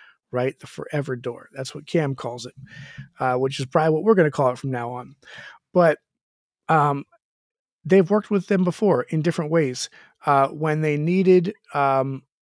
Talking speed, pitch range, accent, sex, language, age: 175 wpm, 140-175 Hz, American, male, English, 40-59